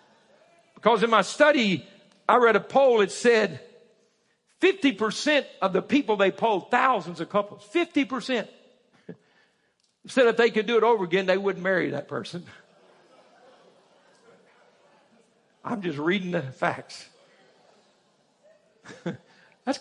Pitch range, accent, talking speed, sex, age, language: 195-275 Hz, American, 125 wpm, male, 60-79, English